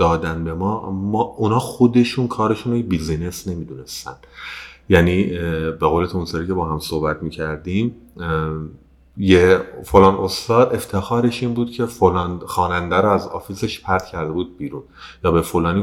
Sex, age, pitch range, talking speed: male, 30-49, 80-95 Hz, 140 wpm